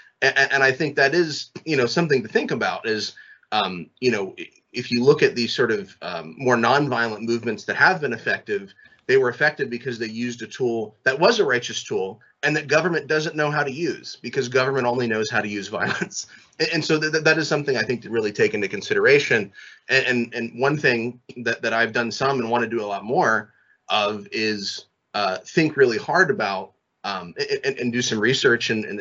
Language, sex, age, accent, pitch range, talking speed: English, male, 30-49, American, 110-145 Hz, 205 wpm